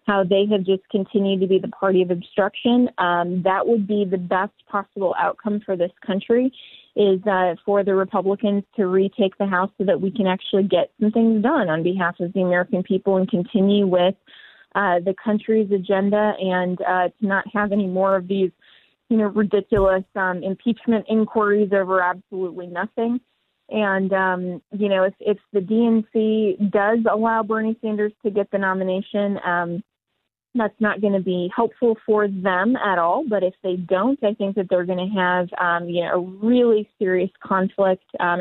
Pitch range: 185-210 Hz